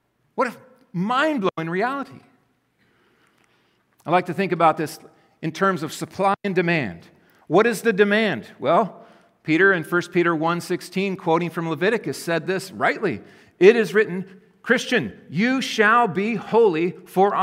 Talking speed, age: 140 wpm, 50-69